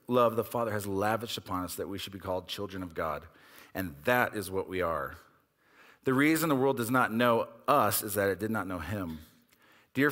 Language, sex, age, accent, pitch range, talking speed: English, male, 40-59, American, 100-125 Hz, 220 wpm